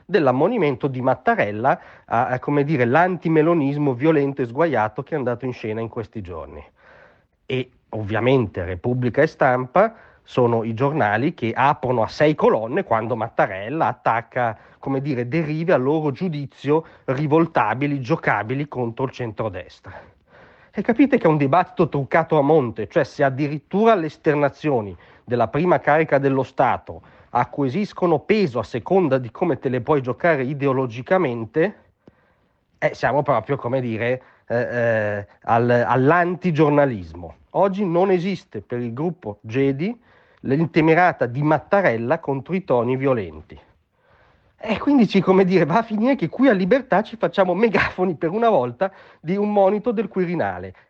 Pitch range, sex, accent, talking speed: 125-180 Hz, male, native, 145 wpm